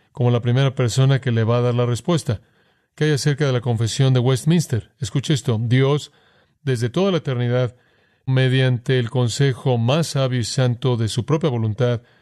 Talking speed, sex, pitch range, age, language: 180 wpm, male, 120-145 Hz, 40-59, Spanish